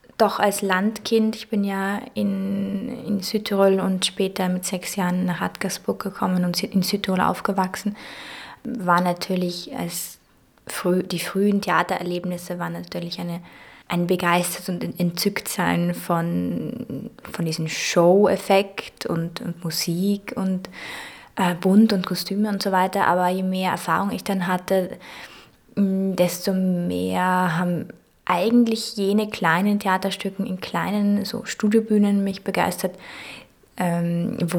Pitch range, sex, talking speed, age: 170-195 Hz, female, 125 wpm, 20-39